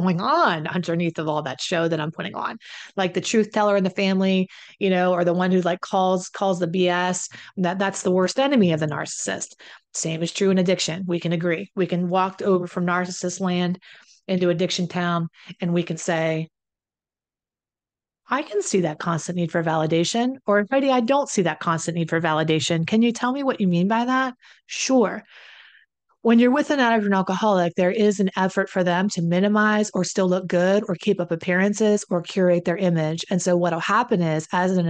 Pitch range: 170-195 Hz